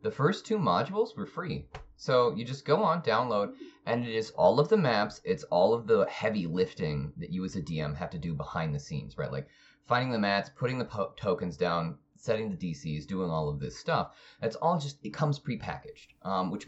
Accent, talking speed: American, 215 wpm